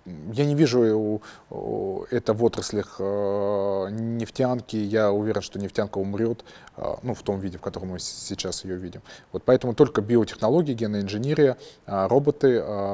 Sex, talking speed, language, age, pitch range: male, 130 wpm, Russian, 20-39, 100-120 Hz